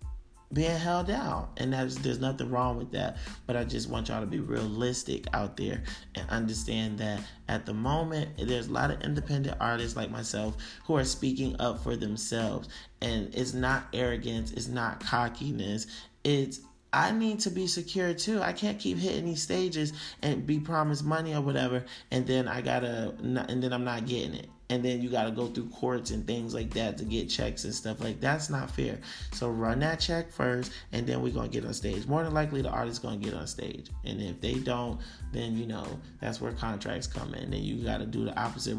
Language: English